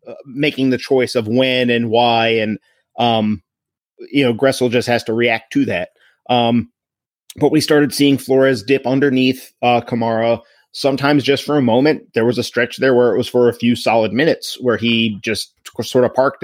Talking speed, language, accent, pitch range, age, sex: 190 wpm, English, American, 115-135 Hz, 30-49, male